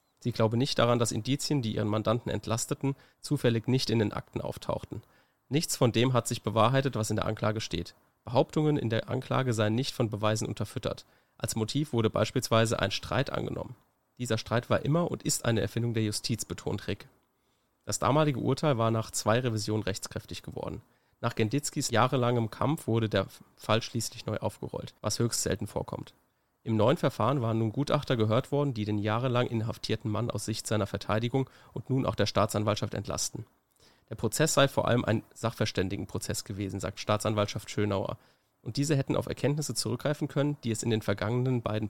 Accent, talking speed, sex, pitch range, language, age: German, 180 wpm, male, 105-130 Hz, German, 30-49